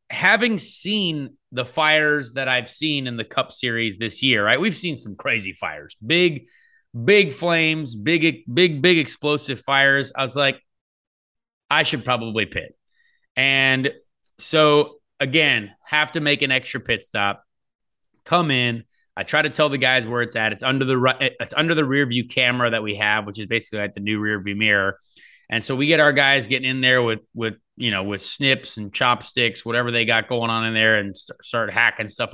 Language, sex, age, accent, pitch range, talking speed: English, male, 30-49, American, 115-155 Hz, 195 wpm